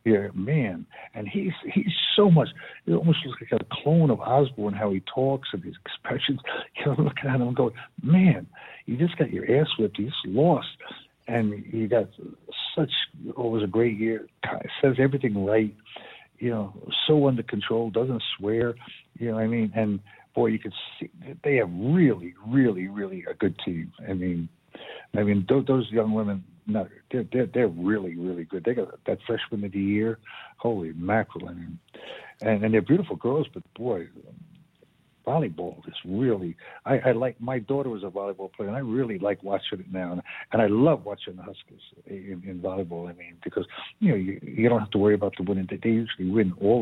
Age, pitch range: 60-79, 100-130 Hz